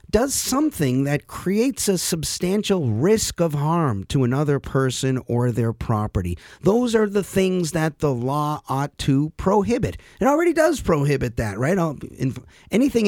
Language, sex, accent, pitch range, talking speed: English, male, American, 125-180 Hz, 145 wpm